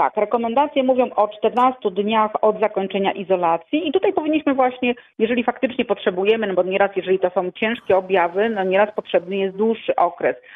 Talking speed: 170 wpm